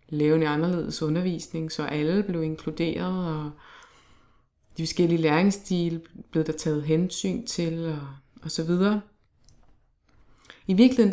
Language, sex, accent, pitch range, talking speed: Danish, female, native, 155-185 Hz, 120 wpm